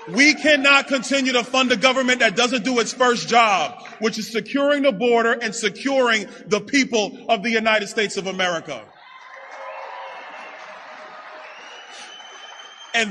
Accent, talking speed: American, 135 wpm